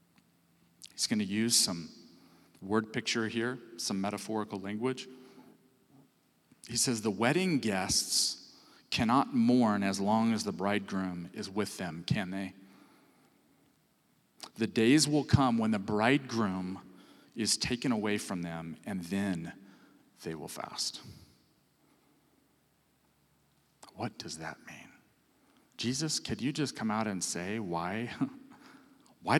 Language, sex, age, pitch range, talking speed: English, male, 40-59, 100-130 Hz, 120 wpm